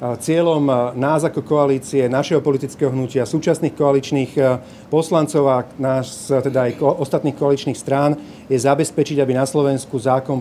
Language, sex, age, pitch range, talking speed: Slovak, male, 40-59, 130-155 Hz, 135 wpm